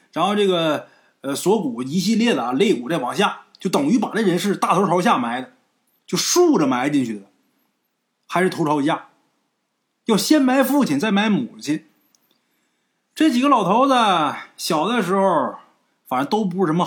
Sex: male